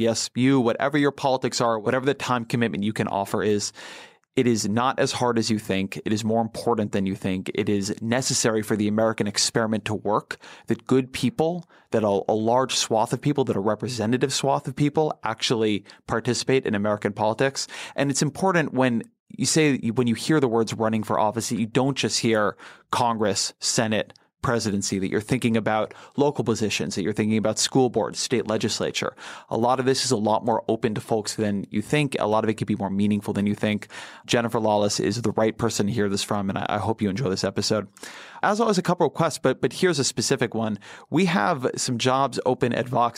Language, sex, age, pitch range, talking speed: English, male, 30-49, 110-130 Hz, 215 wpm